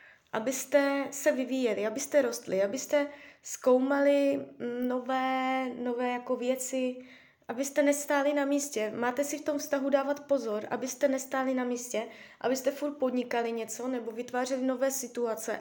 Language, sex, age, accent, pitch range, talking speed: Czech, female, 20-39, native, 220-280 Hz, 130 wpm